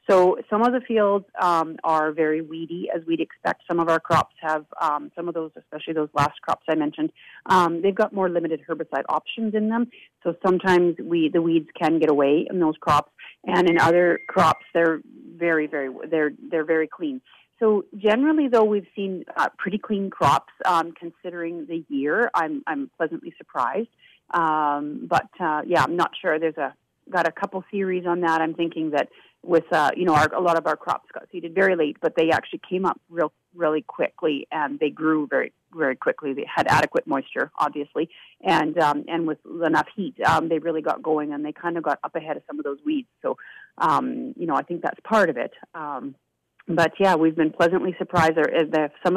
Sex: female